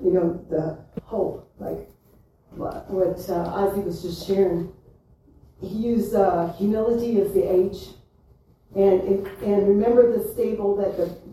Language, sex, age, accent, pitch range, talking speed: English, female, 40-59, American, 175-200 Hz, 140 wpm